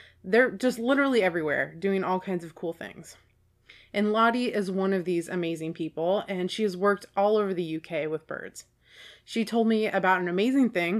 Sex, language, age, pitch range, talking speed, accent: female, English, 30-49, 175-210 Hz, 190 wpm, American